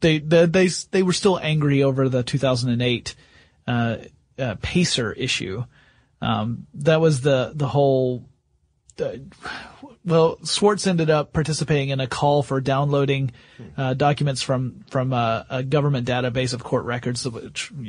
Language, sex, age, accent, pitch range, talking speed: English, male, 30-49, American, 130-165 Hz, 145 wpm